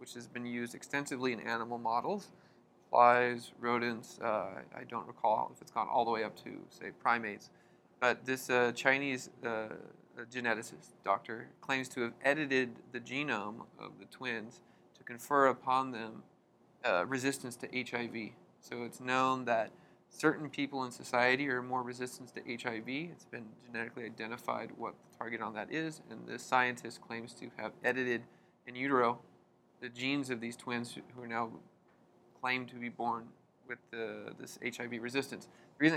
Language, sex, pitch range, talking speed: English, male, 120-135 Hz, 165 wpm